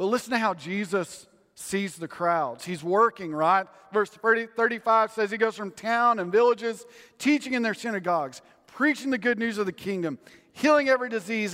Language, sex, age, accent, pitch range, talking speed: English, male, 40-59, American, 175-250 Hz, 175 wpm